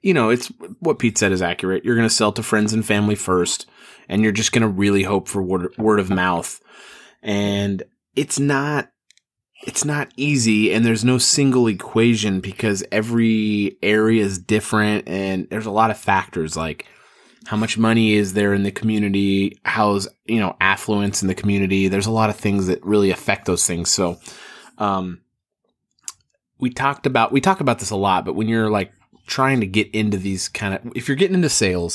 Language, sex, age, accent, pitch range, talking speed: English, male, 30-49, American, 100-120 Hz, 195 wpm